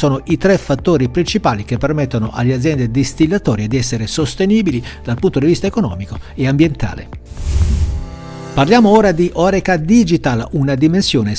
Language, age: Italian, 60-79